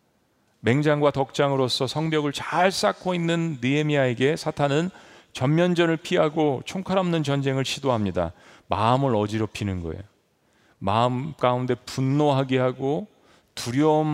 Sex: male